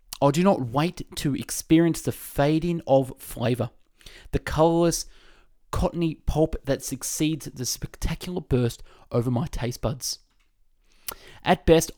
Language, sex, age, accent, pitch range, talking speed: English, male, 20-39, Australian, 125-160 Hz, 125 wpm